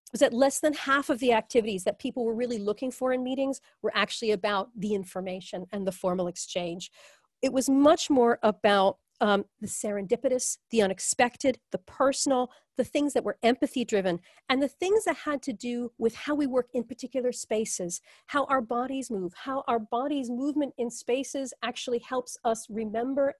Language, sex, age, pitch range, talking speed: English, female, 40-59, 210-275 Hz, 180 wpm